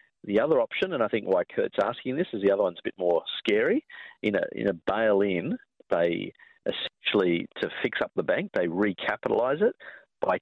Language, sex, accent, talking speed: English, male, Australian, 195 wpm